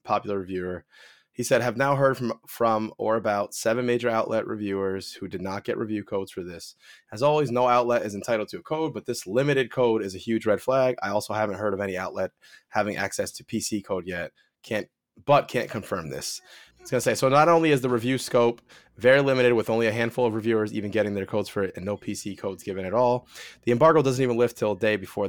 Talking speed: 235 wpm